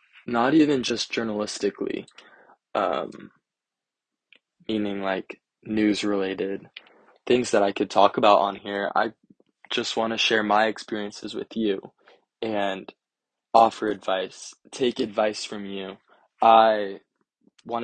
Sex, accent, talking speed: male, American, 115 wpm